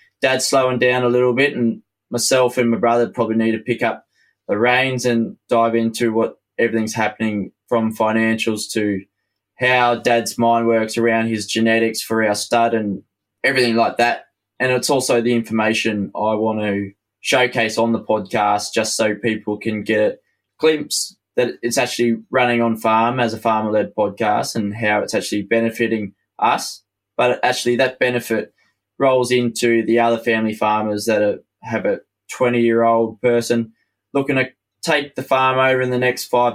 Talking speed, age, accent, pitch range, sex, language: 165 wpm, 20-39, Australian, 110-120 Hz, male, English